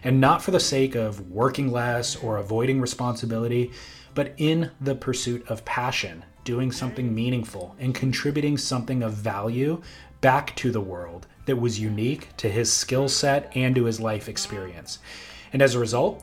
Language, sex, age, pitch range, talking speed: English, male, 30-49, 115-140 Hz, 165 wpm